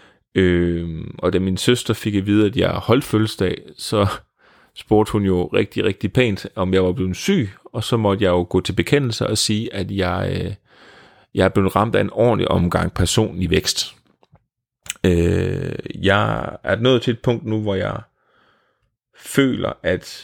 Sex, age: male, 30-49